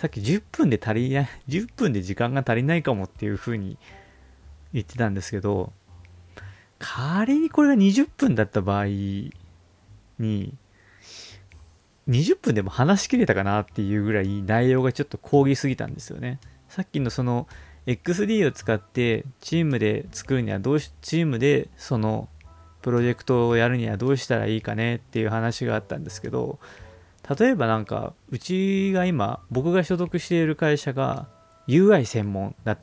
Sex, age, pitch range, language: male, 20-39, 105-140 Hz, Japanese